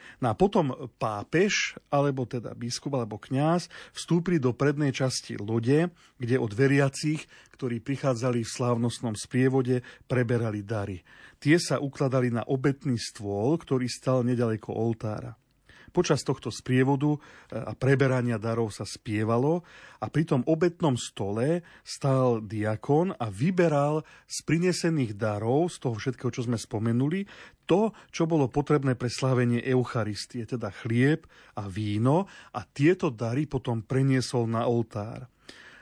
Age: 40-59